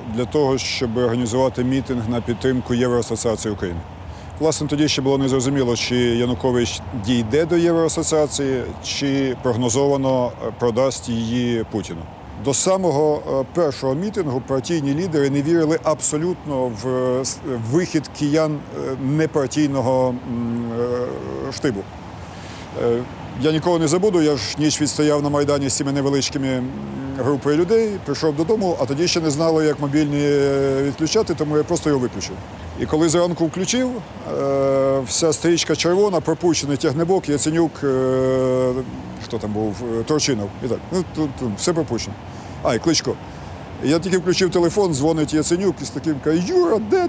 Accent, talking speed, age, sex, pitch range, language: native, 135 wpm, 50-69, male, 120-155 Hz, Ukrainian